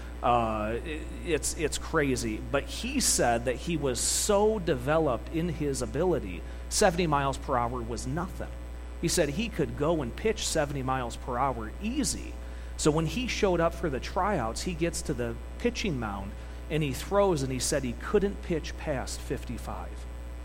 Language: English